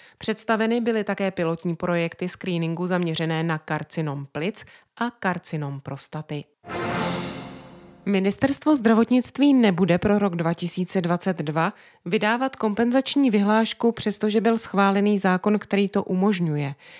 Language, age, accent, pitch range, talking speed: Czech, 30-49, native, 170-225 Hz, 100 wpm